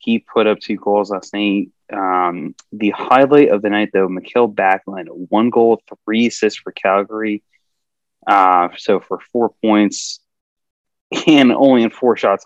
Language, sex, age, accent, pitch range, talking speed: English, male, 20-39, American, 100-120 Hz, 155 wpm